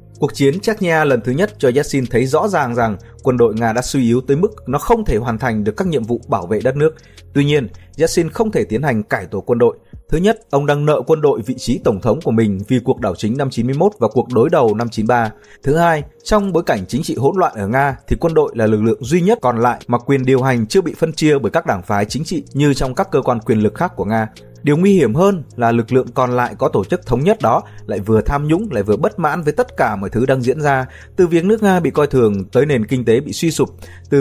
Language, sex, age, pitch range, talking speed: Vietnamese, male, 20-39, 115-160 Hz, 280 wpm